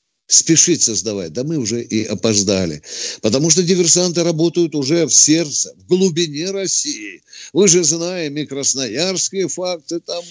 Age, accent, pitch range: 50-69, native, 120-175 Hz